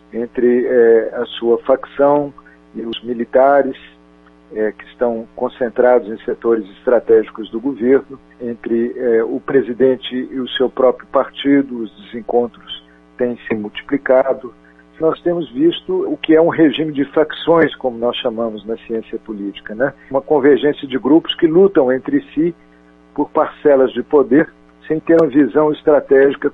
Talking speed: 145 wpm